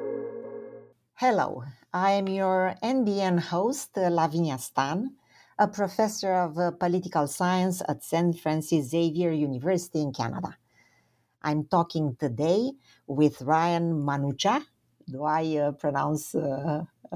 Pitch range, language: 150-200 Hz, English